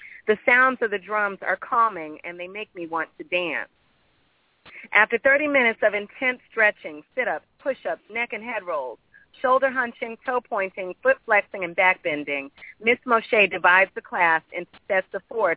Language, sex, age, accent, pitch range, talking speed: English, female, 40-59, American, 180-230 Hz, 170 wpm